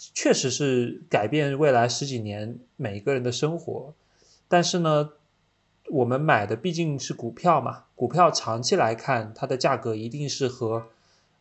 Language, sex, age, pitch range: Chinese, male, 20-39, 115-155 Hz